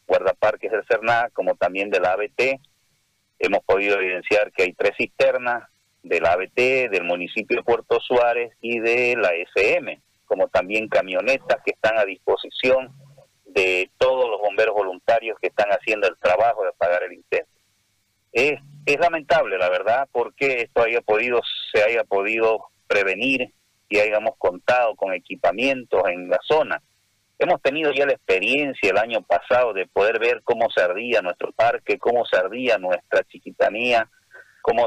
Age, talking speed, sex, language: 40-59, 150 wpm, male, Spanish